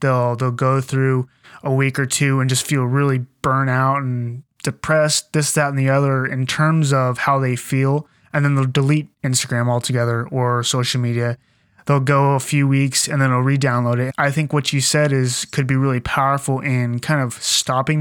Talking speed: 200 wpm